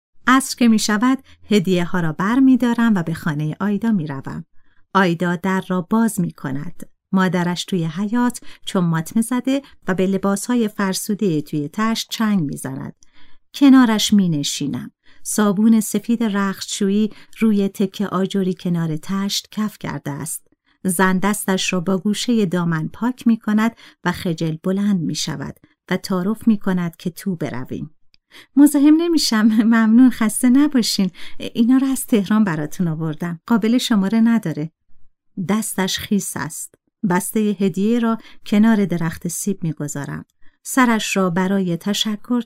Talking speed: 140 wpm